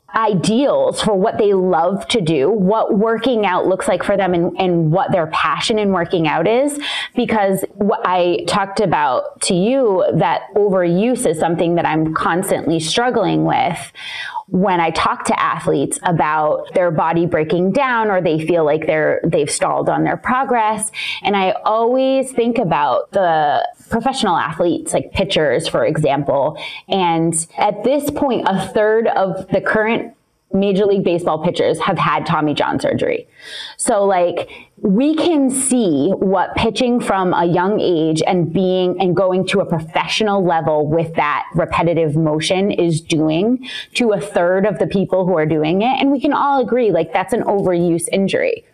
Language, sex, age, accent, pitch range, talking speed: English, female, 20-39, American, 175-230 Hz, 165 wpm